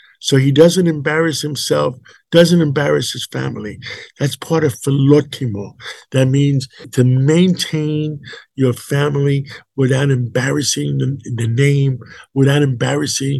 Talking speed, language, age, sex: 115 wpm, English, 50-69, male